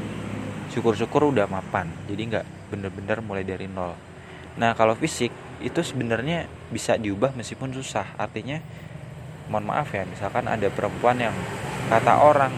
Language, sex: Indonesian, male